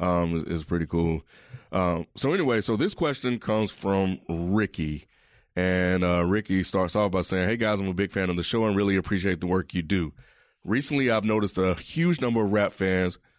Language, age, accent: English, 30-49, American